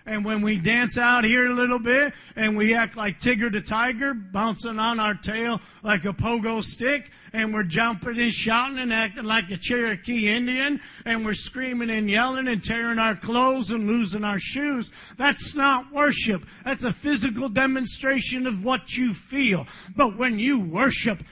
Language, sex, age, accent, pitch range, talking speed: English, male, 50-69, American, 220-290 Hz, 175 wpm